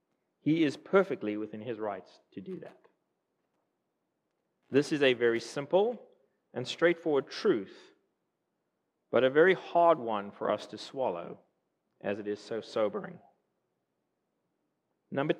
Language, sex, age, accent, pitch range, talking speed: English, male, 40-59, American, 125-180 Hz, 125 wpm